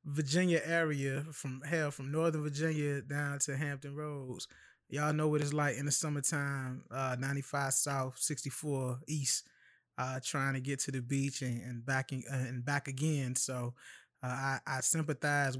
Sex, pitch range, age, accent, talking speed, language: male, 130-155 Hz, 20-39, American, 175 wpm, English